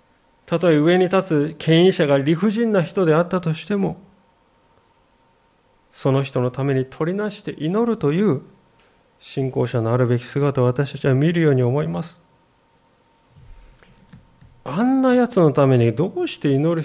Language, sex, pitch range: Japanese, male, 135-200 Hz